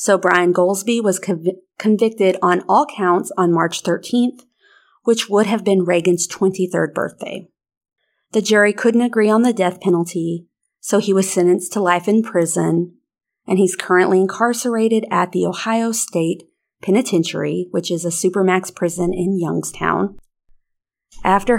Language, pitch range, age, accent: English, 175-215 Hz, 30-49, American